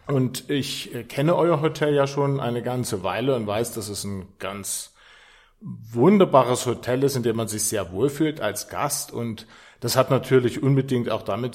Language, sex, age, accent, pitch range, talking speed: German, male, 40-59, German, 115-145 Hz, 175 wpm